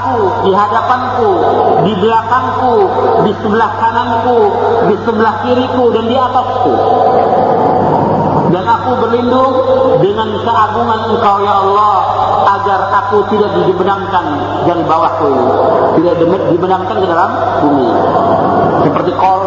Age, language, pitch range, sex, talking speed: 40-59, Malay, 195-230 Hz, male, 110 wpm